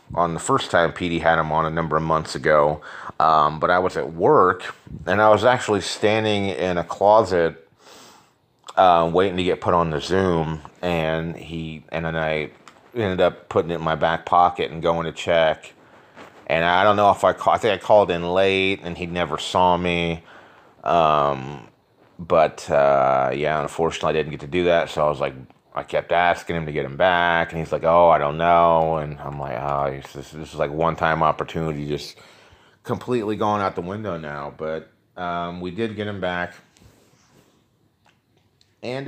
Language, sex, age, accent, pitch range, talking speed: English, male, 30-49, American, 80-100 Hz, 190 wpm